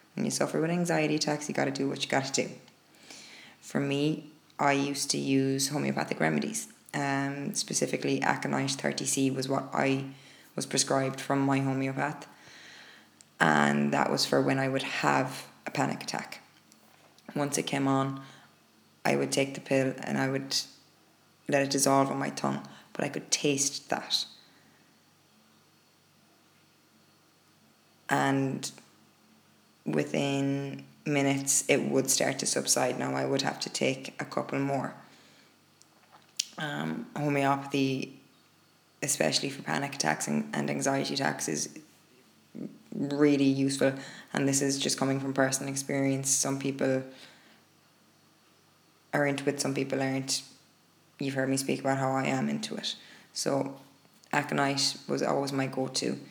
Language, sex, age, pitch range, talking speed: English, female, 20-39, 130-140 Hz, 140 wpm